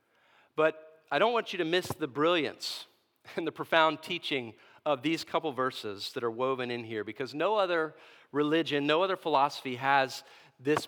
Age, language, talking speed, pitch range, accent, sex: 40-59, English, 170 wpm, 135-165 Hz, American, male